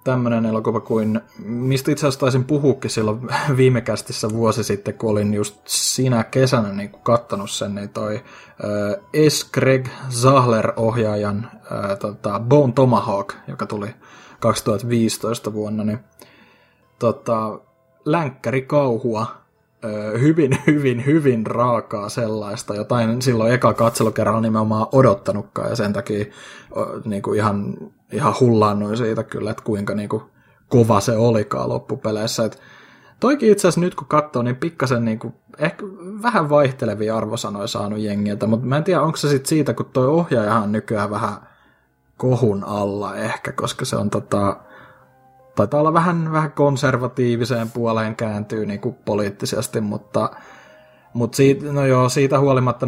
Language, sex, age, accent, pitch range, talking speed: Finnish, male, 20-39, native, 105-130 Hz, 135 wpm